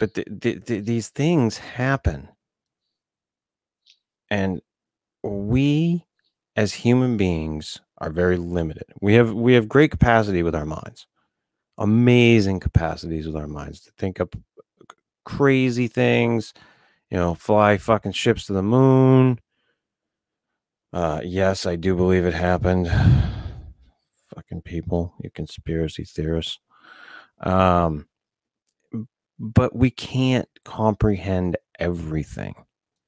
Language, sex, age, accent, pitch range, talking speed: English, male, 30-49, American, 90-115 Hz, 105 wpm